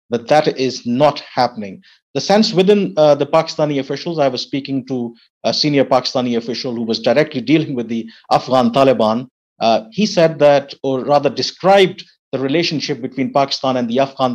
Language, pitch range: English, 125-155 Hz